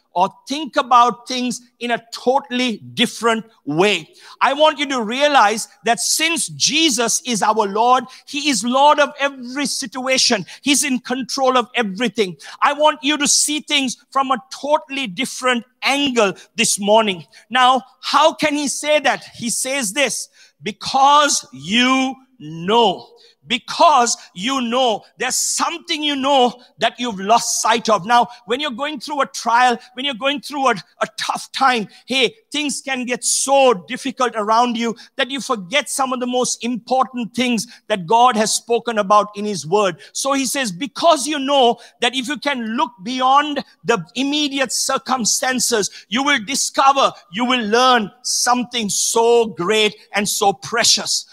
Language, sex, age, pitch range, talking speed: English, male, 50-69, 225-270 Hz, 160 wpm